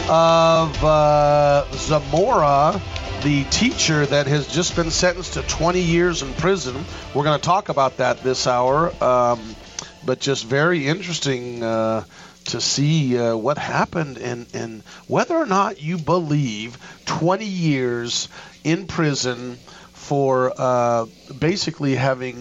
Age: 50-69